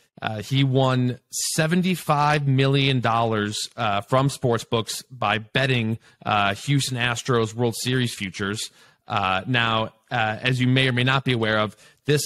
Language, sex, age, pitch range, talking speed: English, male, 30-49, 110-135 Hz, 155 wpm